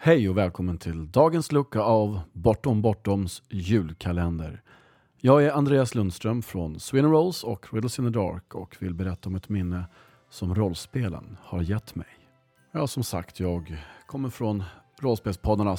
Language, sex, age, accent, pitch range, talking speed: Swedish, male, 40-59, Norwegian, 95-125 Hz, 150 wpm